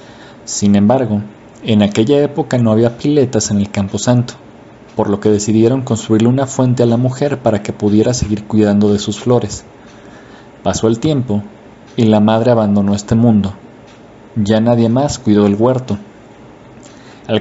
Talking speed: 155 wpm